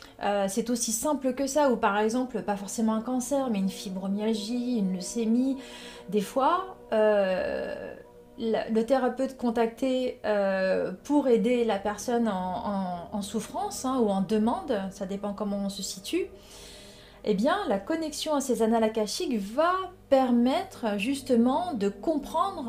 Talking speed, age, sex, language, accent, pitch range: 145 wpm, 30-49, female, French, French, 205-255 Hz